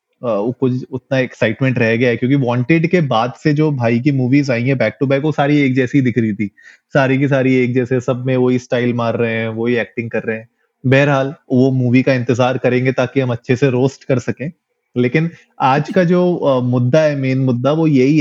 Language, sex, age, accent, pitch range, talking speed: Hindi, male, 30-49, native, 125-160 Hz, 135 wpm